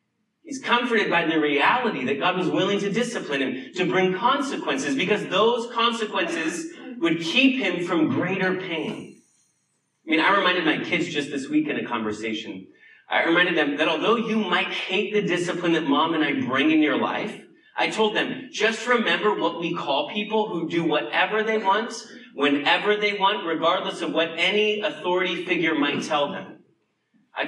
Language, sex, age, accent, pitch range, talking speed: English, male, 30-49, American, 160-225 Hz, 175 wpm